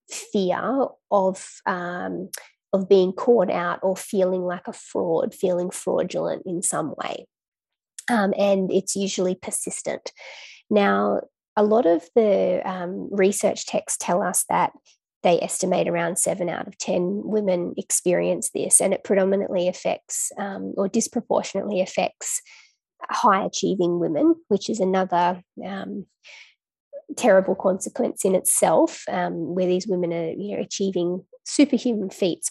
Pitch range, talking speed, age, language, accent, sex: 185-225 Hz, 135 wpm, 20-39, English, Australian, female